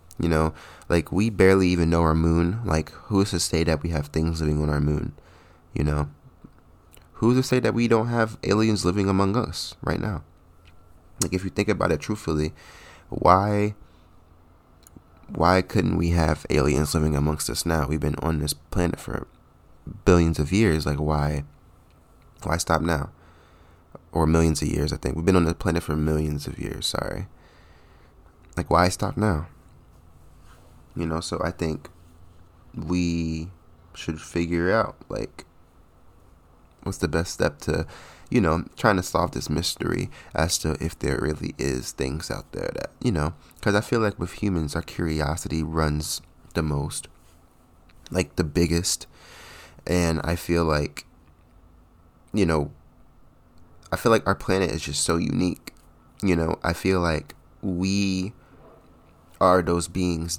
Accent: American